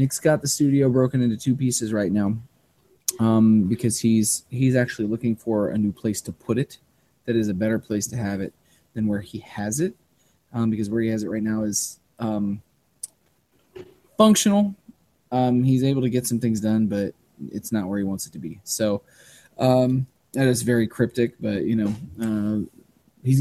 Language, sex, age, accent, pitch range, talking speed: English, male, 20-39, American, 105-130 Hz, 190 wpm